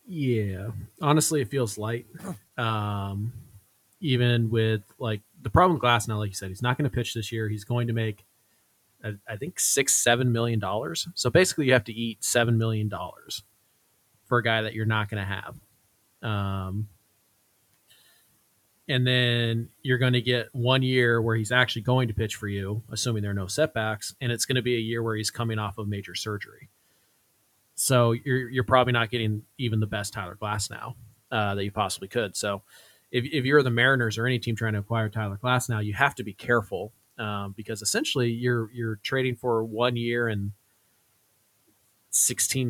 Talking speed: 195 wpm